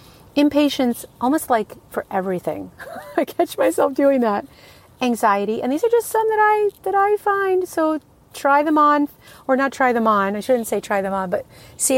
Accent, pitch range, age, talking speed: American, 195-255 Hz, 40-59, 190 wpm